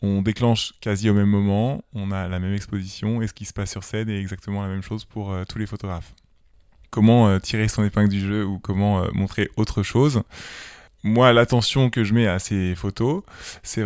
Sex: male